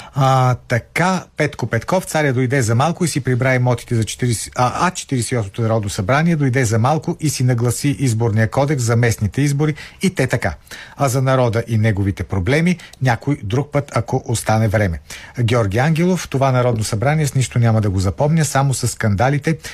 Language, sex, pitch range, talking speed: Bulgarian, male, 110-140 Hz, 170 wpm